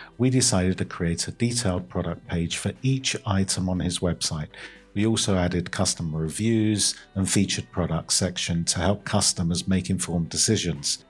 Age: 50-69